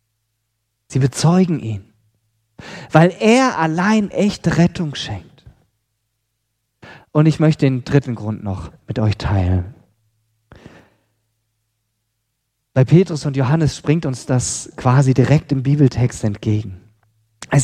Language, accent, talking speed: German, German, 110 wpm